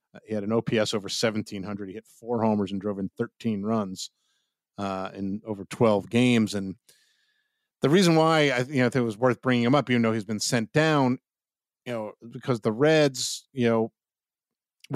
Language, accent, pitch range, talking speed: English, American, 105-125 Hz, 180 wpm